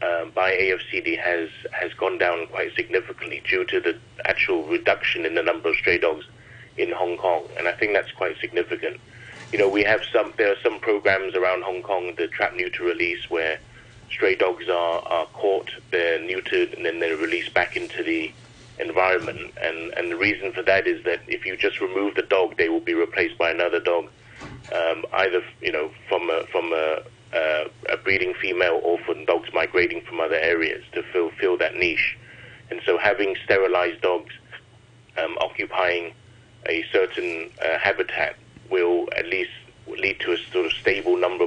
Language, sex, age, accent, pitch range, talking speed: English, male, 30-49, British, 360-420 Hz, 180 wpm